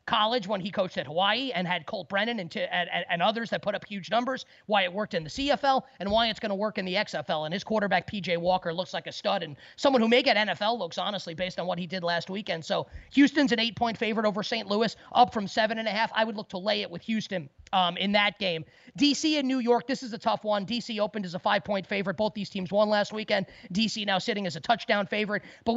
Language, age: English, 30-49